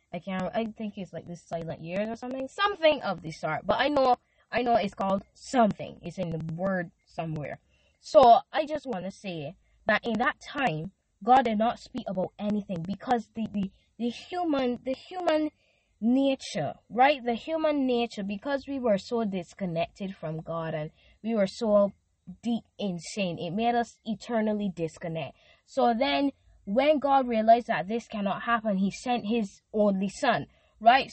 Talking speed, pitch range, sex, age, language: 175 wpm, 190-255 Hz, female, 10-29, English